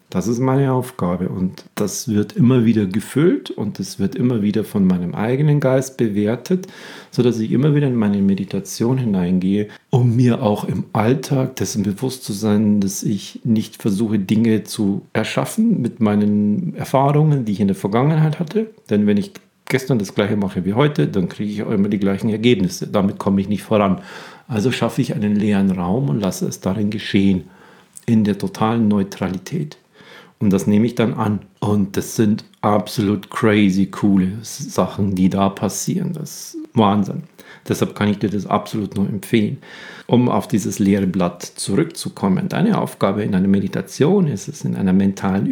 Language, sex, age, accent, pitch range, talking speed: German, male, 40-59, German, 100-135 Hz, 175 wpm